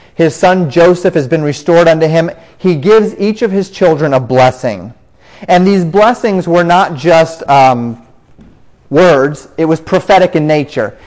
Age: 30-49